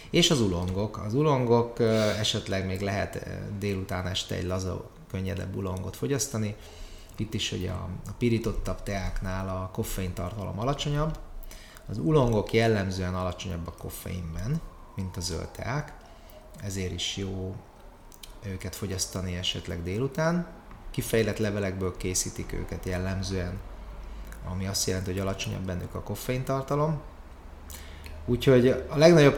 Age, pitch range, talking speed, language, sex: 30-49, 95-120 Hz, 120 wpm, Hungarian, male